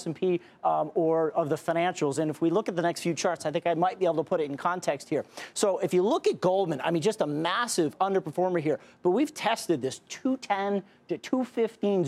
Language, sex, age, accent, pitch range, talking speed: English, male, 40-59, American, 165-210 Hz, 240 wpm